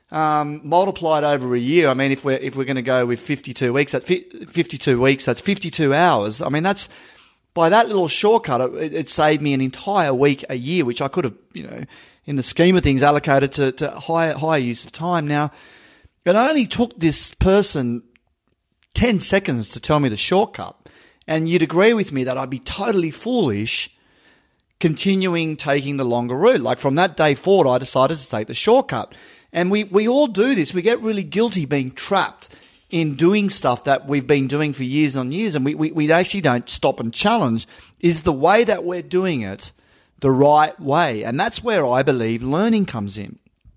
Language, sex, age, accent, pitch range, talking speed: English, male, 30-49, Australian, 130-175 Hz, 200 wpm